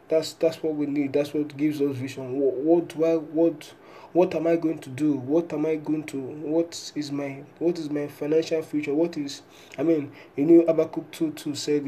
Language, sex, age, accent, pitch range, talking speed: English, male, 20-39, Nigerian, 135-165 Hz, 210 wpm